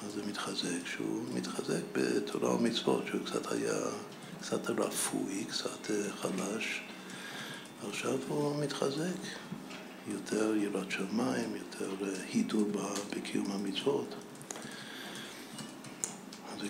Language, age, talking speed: Hebrew, 60-79, 85 wpm